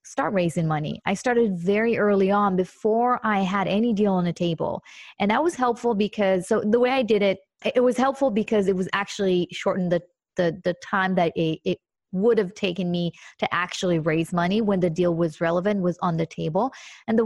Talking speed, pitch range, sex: 210 wpm, 180-230 Hz, female